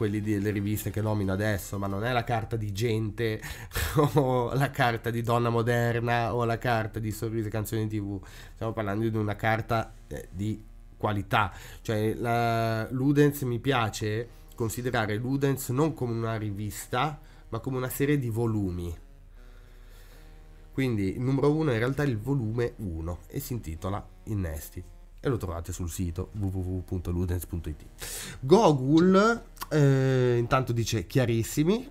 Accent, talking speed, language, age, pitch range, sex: native, 145 wpm, Italian, 20-39, 105-135 Hz, male